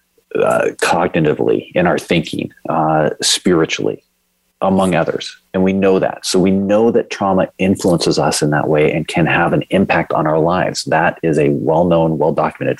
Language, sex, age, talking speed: English, male, 40-59, 170 wpm